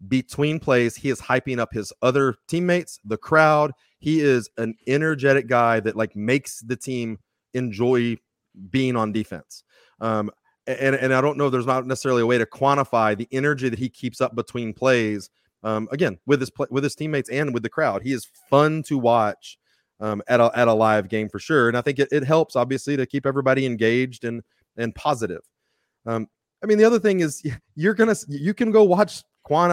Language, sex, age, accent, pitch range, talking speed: English, male, 30-49, American, 120-150 Hz, 200 wpm